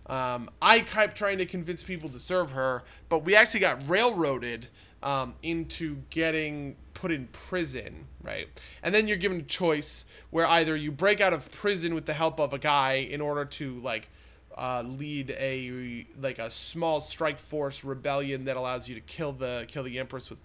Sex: male